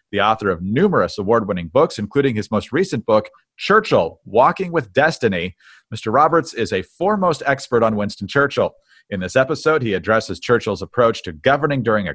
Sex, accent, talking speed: male, American, 175 wpm